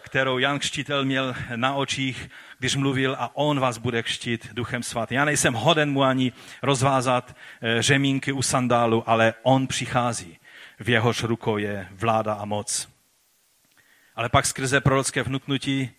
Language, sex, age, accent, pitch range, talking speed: Czech, male, 40-59, native, 110-130 Hz, 145 wpm